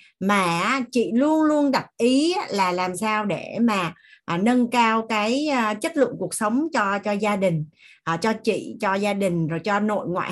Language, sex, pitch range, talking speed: Vietnamese, female, 180-255 Hz, 180 wpm